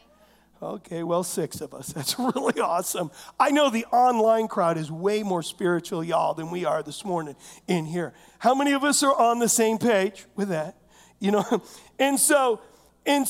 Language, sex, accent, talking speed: English, male, American, 185 wpm